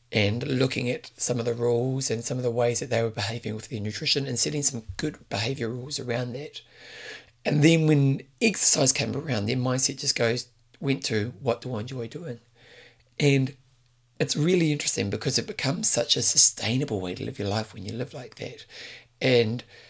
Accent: British